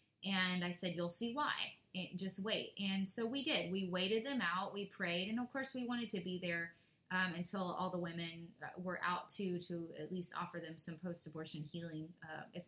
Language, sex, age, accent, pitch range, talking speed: English, female, 20-39, American, 170-210 Hz, 215 wpm